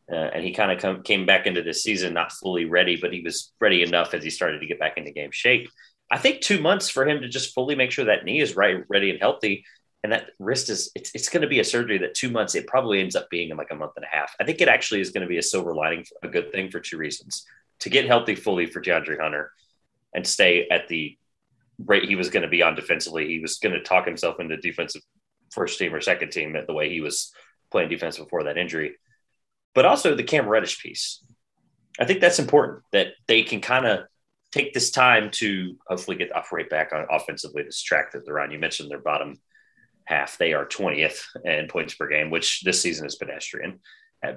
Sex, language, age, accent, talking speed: male, English, 30-49, American, 240 wpm